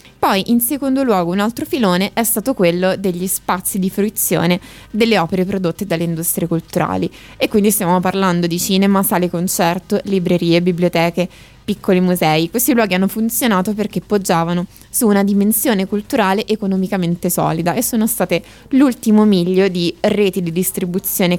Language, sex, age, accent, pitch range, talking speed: Italian, female, 20-39, native, 175-215 Hz, 150 wpm